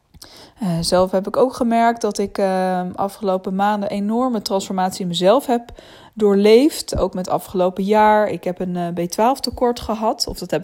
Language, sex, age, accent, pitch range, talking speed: Dutch, female, 20-39, Dutch, 180-220 Hz, 175 wpm